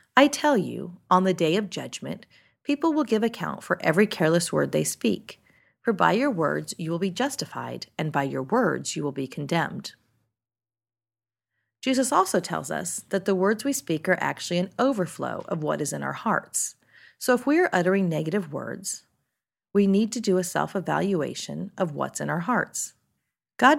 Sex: female